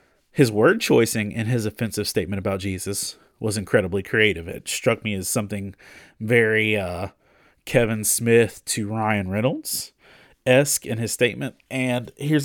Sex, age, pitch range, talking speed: male, 30-49, 100-120 Hz, 140 wpm